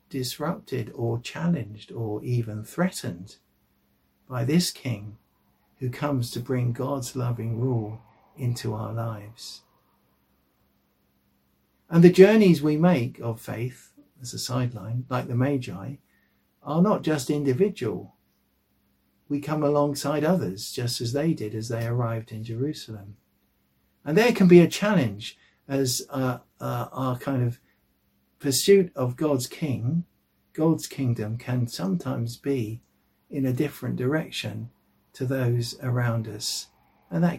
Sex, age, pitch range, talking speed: male, 60-79, 105-140 Hz, 130 wpm